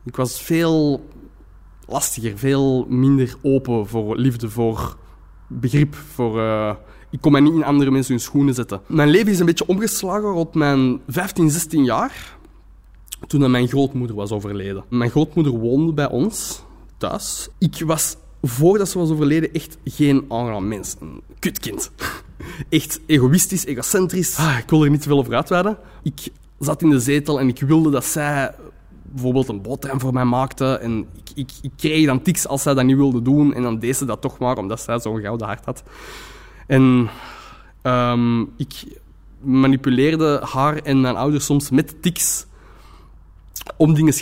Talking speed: 165 wpm